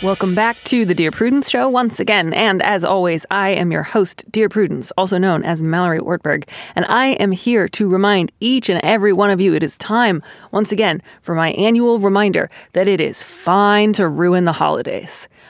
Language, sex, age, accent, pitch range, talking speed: English, female, 30-49, American, 175-225 Hz, 200 wpm